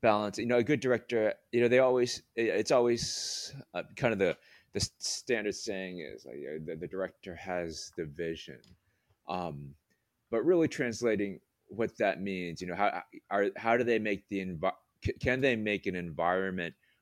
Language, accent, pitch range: English, American, 85-100 Hz